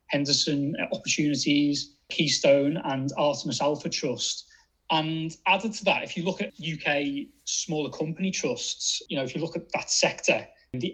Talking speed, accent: 160 wpm, British